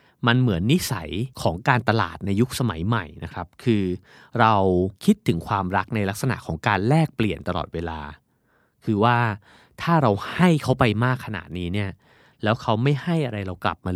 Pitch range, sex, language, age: 95-125 Hz, male, Thai, 30-49